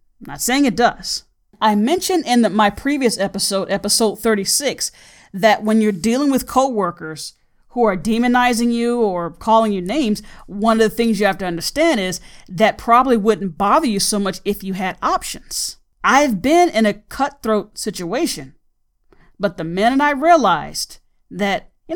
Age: 40-59